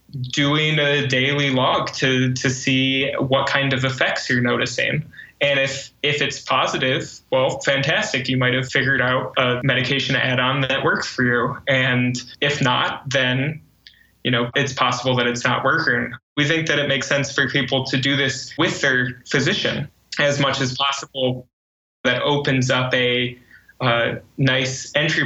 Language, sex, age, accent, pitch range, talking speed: English, male, 20-39, American, 125-140 Hz, 165 wpm